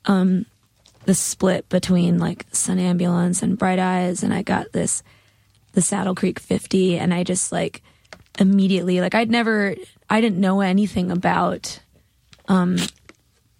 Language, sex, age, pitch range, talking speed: English, female, 20-39, 170-195 Hz, 140 wpm